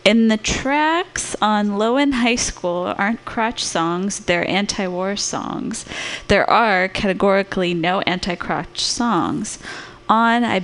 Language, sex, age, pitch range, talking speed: English, female, 20-39, 180-225 Hz, 120 wpm